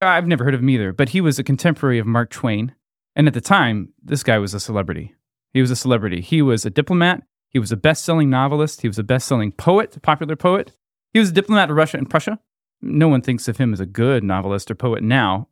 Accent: American